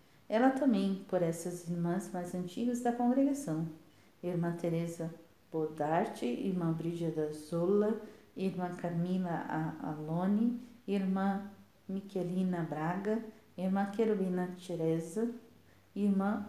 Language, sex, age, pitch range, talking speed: Portuguese, female, 50-69, 170-215 Hz, 90 wpm